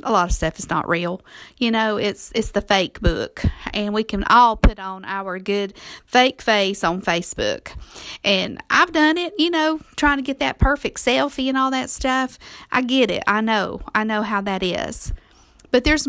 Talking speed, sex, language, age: 200 wpm, female, English, 50-69